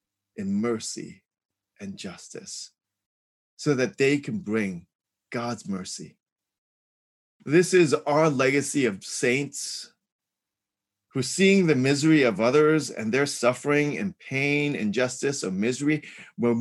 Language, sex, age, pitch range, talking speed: English, male, 30-49, 100-150 Hz, 115 wpm